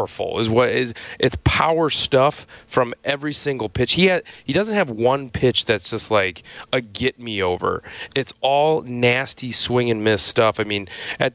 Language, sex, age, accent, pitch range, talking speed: English, male, 30-49, American, 105-125 Hz, 155 wpm